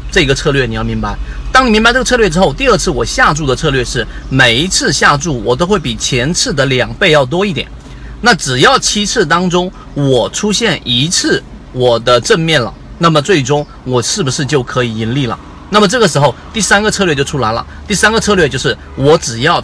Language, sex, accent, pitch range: Chinese, male, native, 125-180 Hz